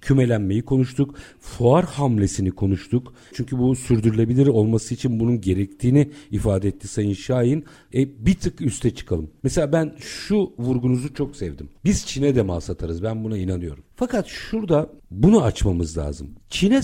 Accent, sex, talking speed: native, male, 145 wpm